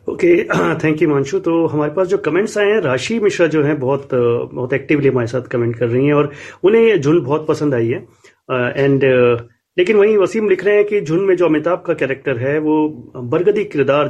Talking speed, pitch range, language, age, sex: 215 wpm, 140-180 Hz, Hindi, 30-49, male